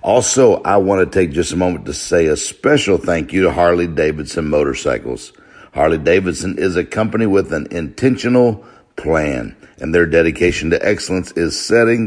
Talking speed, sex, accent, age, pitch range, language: 160 wpm, male, American, 60-79, 80-105 Hz, English